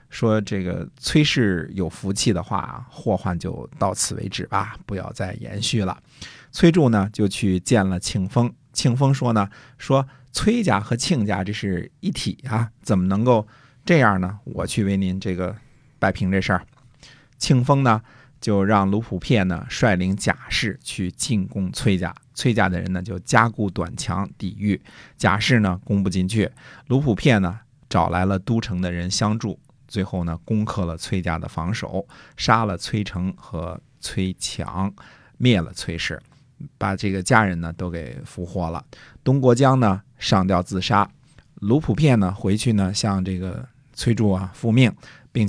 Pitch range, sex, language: 95-125 Hz, male, Chinese